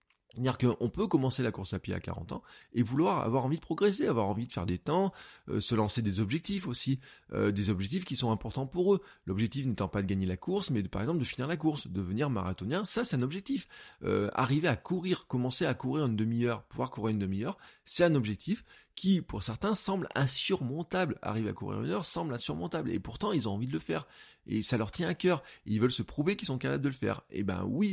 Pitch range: 110-165 Hz